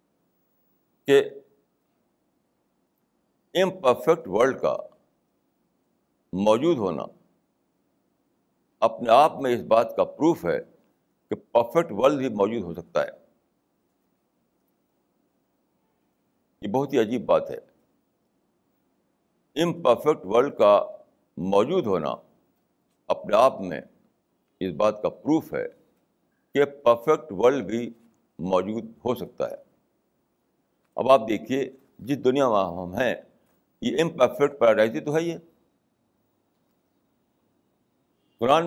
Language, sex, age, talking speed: Urdu, male, 60-79, 100 wpm